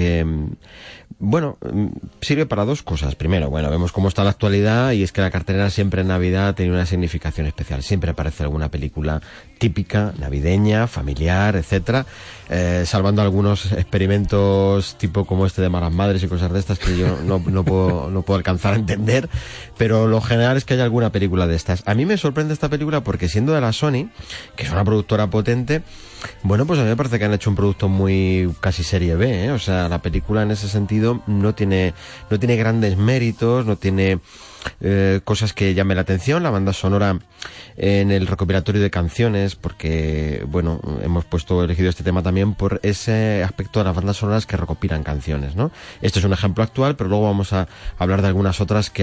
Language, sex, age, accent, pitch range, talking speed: Spanish, male, 30-49, Spanish, 90-105 Hz, 195 wpm